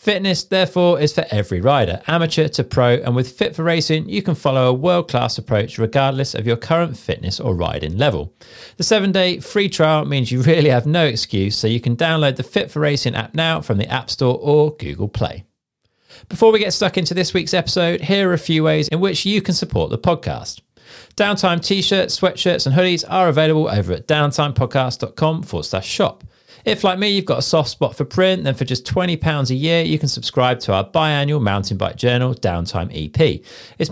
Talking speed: 205 wpm